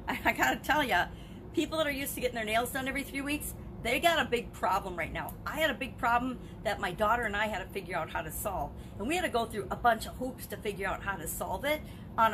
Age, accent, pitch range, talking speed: 50-69, American, 180-240 Hz, 280 wpm